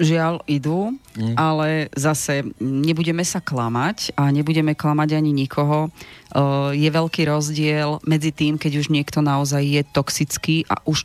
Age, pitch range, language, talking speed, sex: 30-49, 145-160 Hz, Slovak, 135 wpm, female